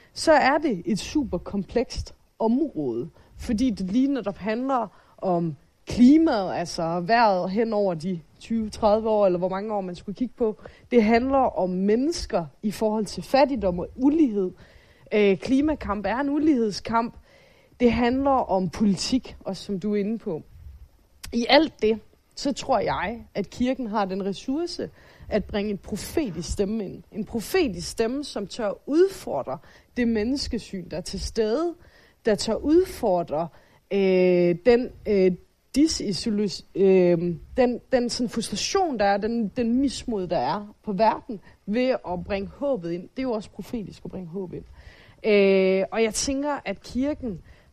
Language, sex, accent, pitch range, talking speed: Danish, female, native, 190-250 Hz, 155 wpm